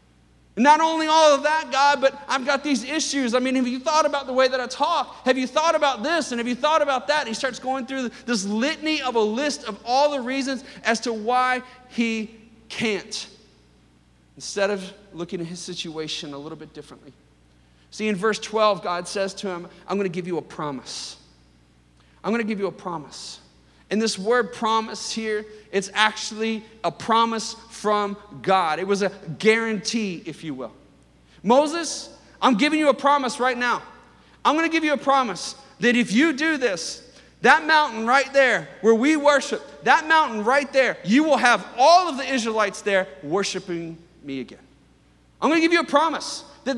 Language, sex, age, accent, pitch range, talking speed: English, male, 40-59, American, 195-280 Hz, 195 wpm